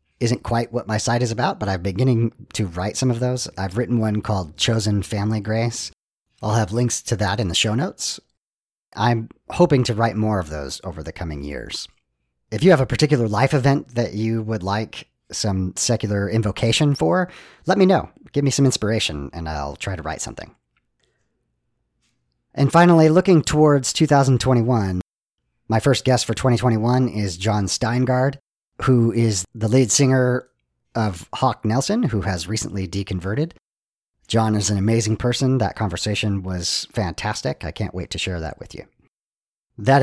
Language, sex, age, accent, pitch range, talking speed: English, male, 40-59, American, 95-125 Hz, 170 wpm